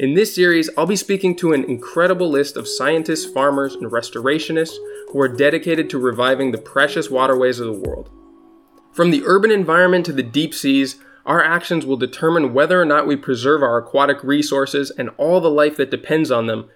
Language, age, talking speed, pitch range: English, 20-39, 195 wpm, 135-175 Hz